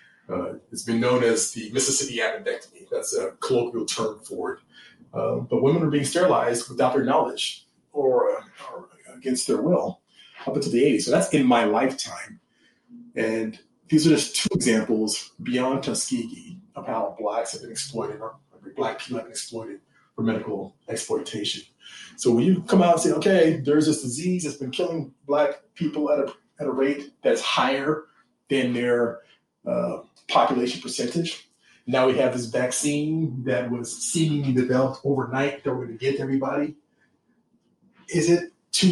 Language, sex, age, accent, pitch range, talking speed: English, male, 30-49, American, 130-185 Hz, 170 wpm